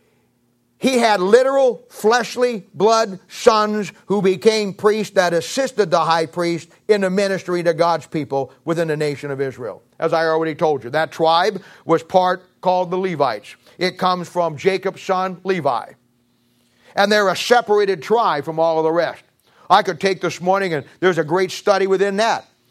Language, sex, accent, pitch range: English, male, American, 170-225 Hz